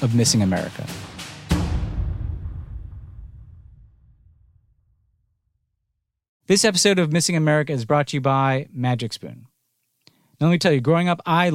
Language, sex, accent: English, male, American